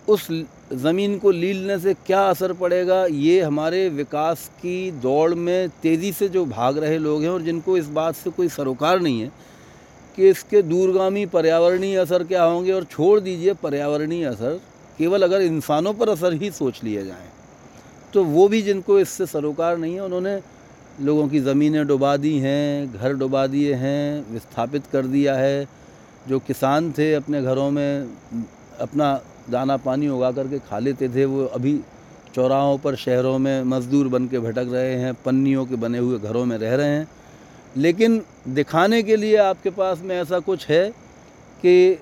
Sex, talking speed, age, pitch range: male, 170 wpm, 40-59, 135-180 Hz